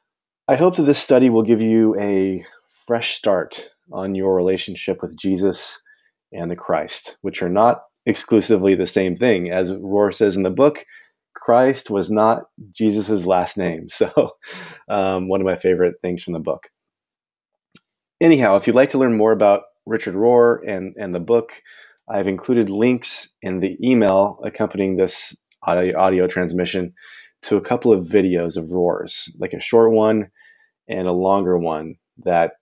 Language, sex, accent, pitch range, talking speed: English, male, American, 95-120 Hz, 160 wpm